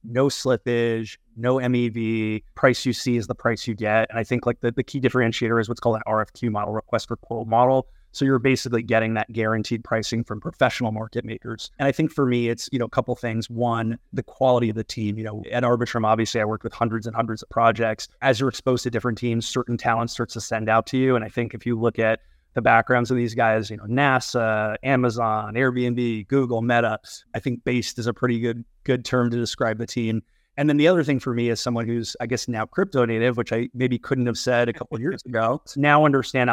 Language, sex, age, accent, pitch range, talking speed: English, male, 20-39, American, 110-125 Hz, 240 wpm